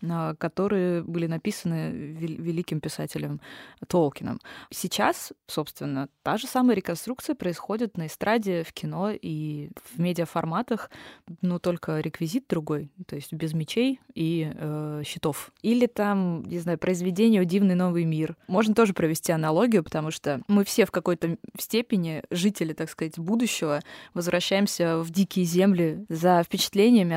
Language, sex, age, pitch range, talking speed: Russian, female, 20-39, 165-200 Hz, 135 wpm